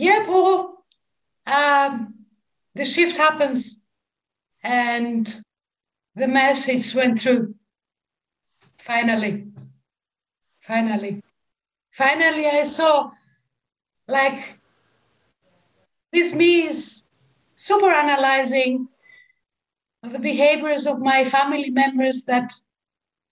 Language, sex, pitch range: English, female, 225-280 Hz